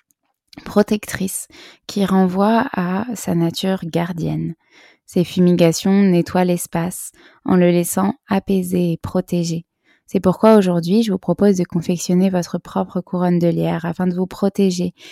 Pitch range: 165-185 Hz